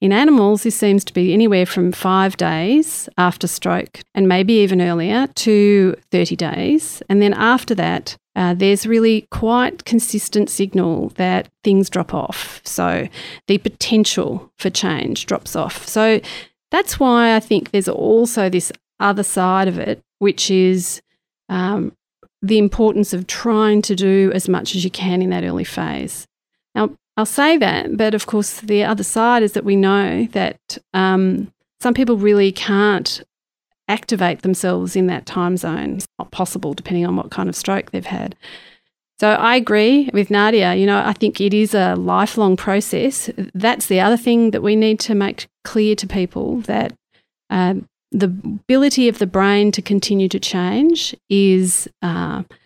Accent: Australian